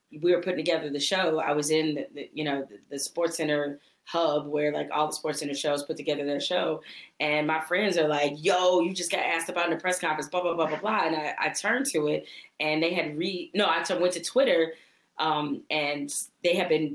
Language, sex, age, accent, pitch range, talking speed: English, female, 20-39, American, 150-175 Hz, 250 wpm